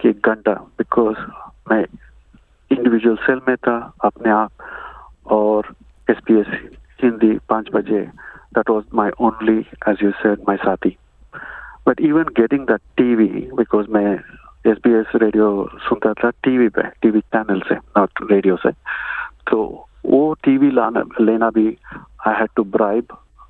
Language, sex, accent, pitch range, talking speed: Hindi, male, native, 105-125 Hz, 100 wpm